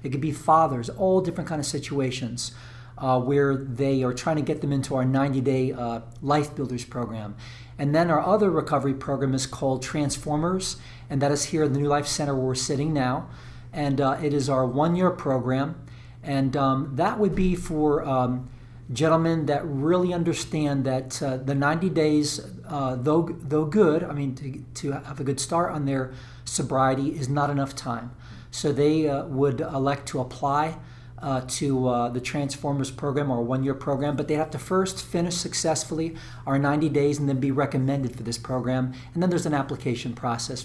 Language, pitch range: English, 130-155 Hz